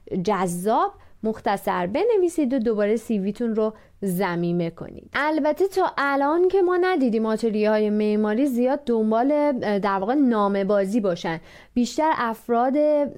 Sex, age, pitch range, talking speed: female, 30-49, 210-285 Hz, 115 wpm